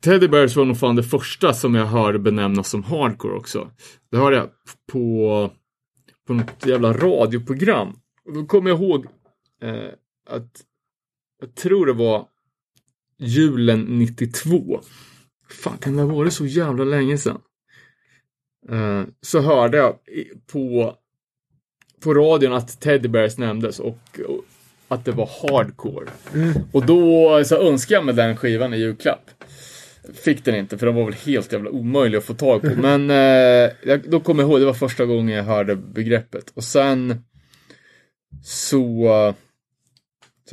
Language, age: English, 30-49